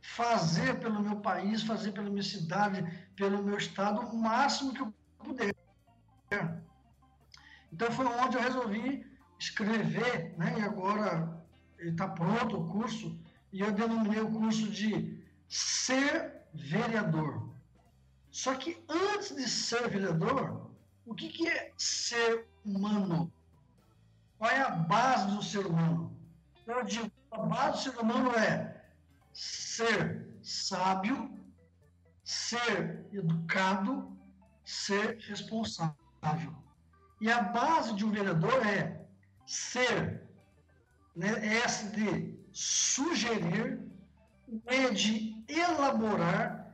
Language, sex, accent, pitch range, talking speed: Portuguese, male, Brazilian, 175-240 Hz, 110 wpm